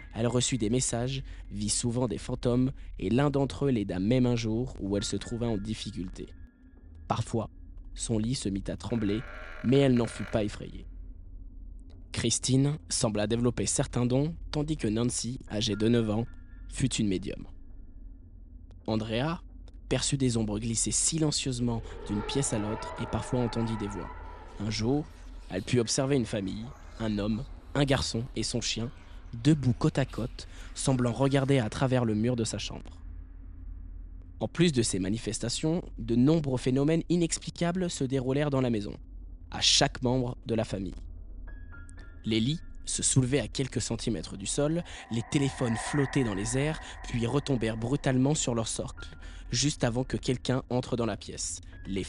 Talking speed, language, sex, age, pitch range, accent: 165 wpm, French, male, 20-39, 90-130 Hz, French